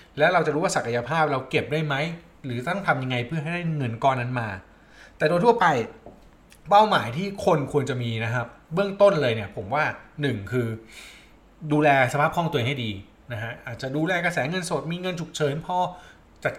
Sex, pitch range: male, 125-170 Hz